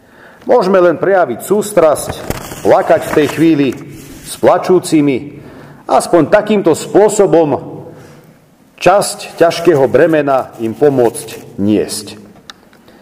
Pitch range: 130-195 Hz